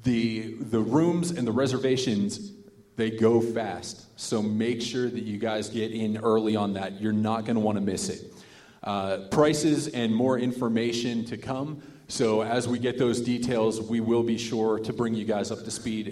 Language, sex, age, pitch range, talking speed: English, male, 40-59, 110-125 Hz, 185 wpm